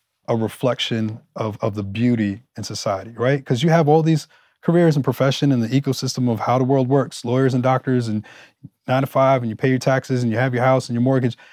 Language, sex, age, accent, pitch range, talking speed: English, male, 20-39, American, 115-135 Hz, 225 wpm